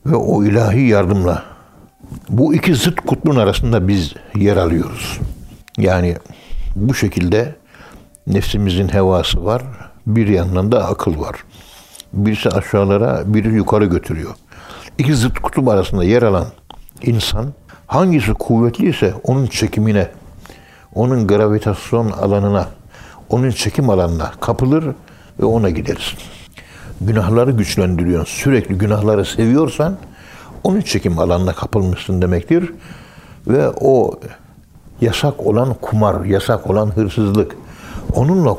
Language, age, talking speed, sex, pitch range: Turkish, 60-79, 105 wpm, male, 95-115 Hz